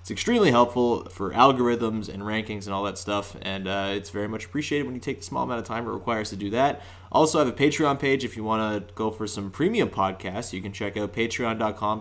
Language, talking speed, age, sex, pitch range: English, 250 wpm, 20-39, male, 100-120 Hz